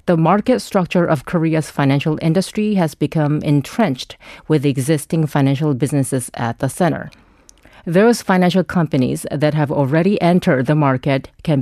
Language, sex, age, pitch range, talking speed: English, female, 40-59, 145-180 Hz, 140 wpm